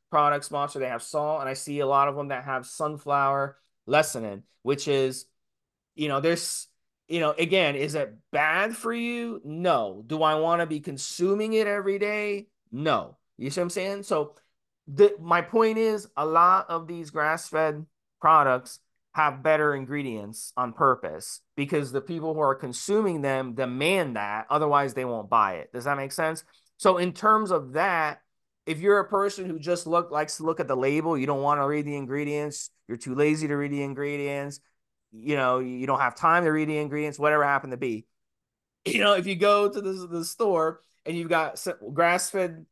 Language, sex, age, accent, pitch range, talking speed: English, male, 30-49, American, 140-170 Hz, 195 wpm